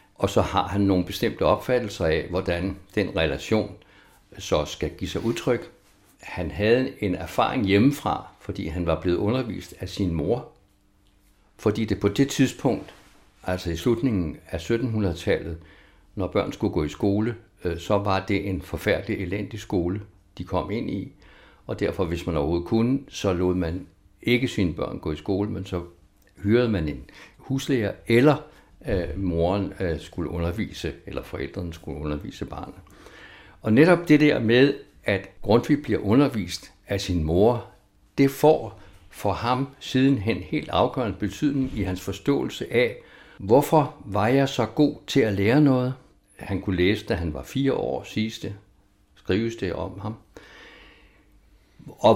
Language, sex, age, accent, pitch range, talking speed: Danish, male, 60-79, native, 90-120 Hz, 155 wpm